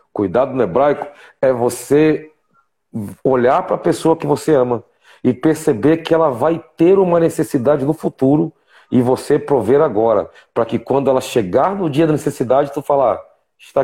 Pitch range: 130-155 Hz